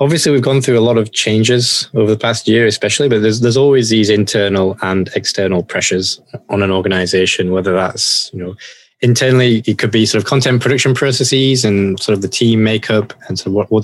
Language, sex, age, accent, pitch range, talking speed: English, male, 20-39, British, 95-115 Hz, 215 wpm